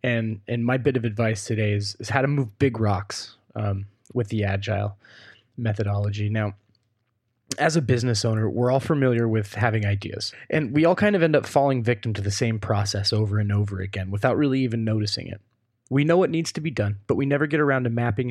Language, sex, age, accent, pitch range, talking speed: English, male, 20-39, American, 105-130 Hz, 215 wpm